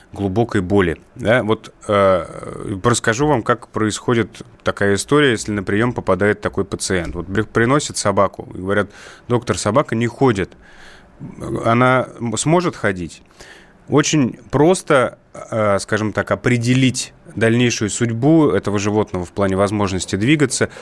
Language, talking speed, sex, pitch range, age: Russian, 120 wpm, male, 100-120 Hz, 30-49